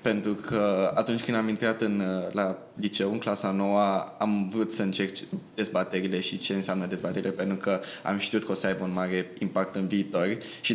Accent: native